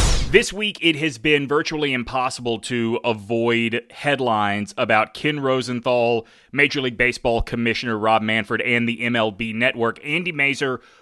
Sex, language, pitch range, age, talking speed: male, English, 120-155 Hz, 20-39, 135 wpm